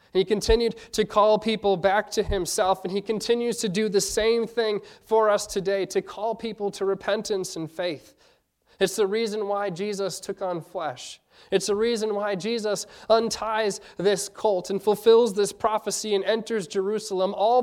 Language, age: English, 30-49